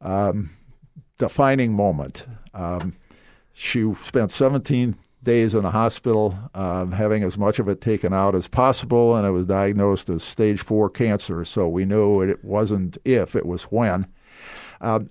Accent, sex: American, male